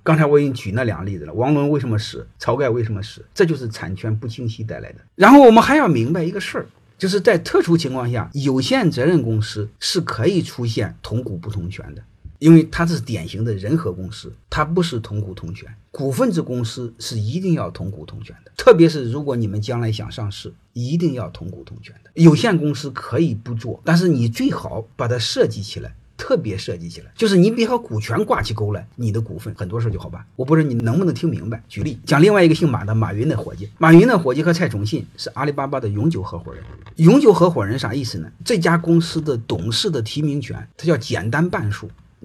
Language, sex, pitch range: Chinese, male, 110-165 Hz